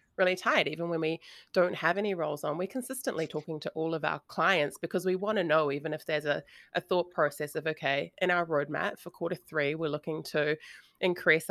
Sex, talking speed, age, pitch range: female, 220 wpm, 30-49, 145-170 Hz